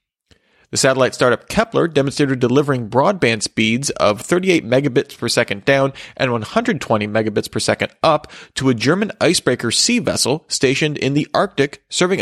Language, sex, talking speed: English, male, 150 wpm